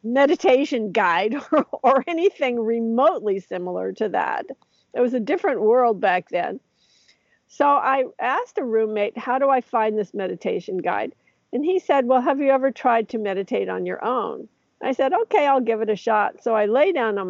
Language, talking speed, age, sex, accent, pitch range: English, 185 wpm, 50-69, female, American, 205-265 Hz